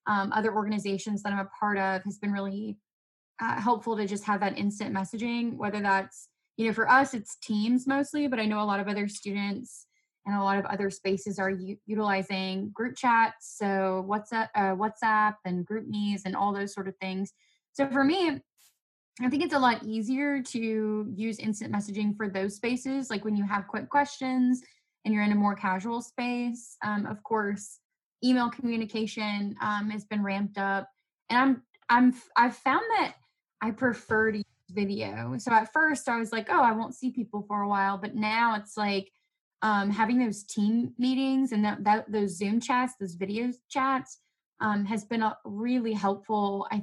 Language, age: English, 10-29